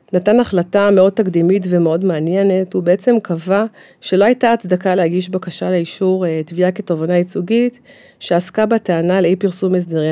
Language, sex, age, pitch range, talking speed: Hebrew, female, 40-59, 170-215 Hz, 135 wpm